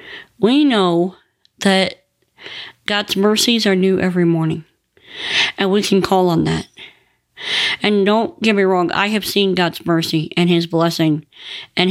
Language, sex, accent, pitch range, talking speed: English, female, American, 165-200 Hz, 145 wpm